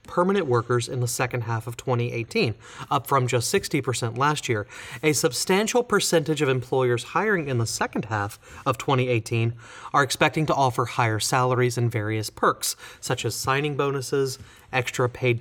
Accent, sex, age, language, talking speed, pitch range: American, male, 30-49, English, 165 wpm, 120-155 Hz